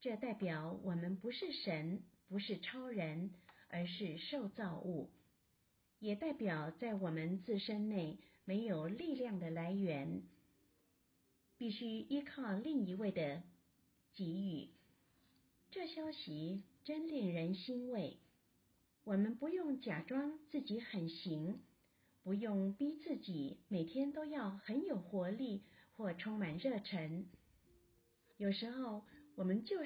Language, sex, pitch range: Chinese, female, 175-250 Hz